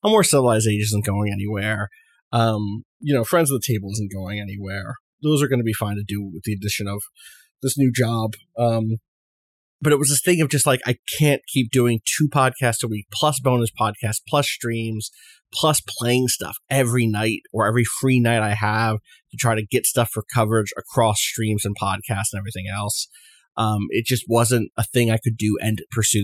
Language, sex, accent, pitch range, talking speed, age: English, male, American, 105-125 Hz, 205 wpm, 30-49